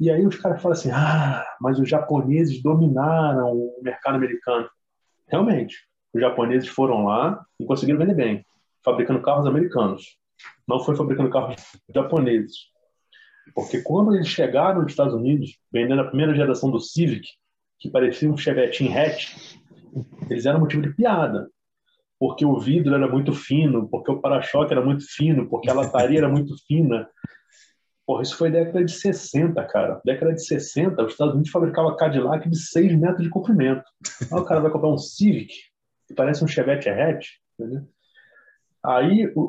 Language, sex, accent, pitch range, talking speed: Portuguese, male, Brazilian, 130-170 Hz, 160 wpm